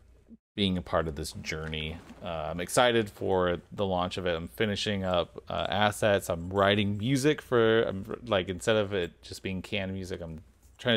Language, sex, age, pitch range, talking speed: English, male, 30-49, 80-100 Hz, 185 wpm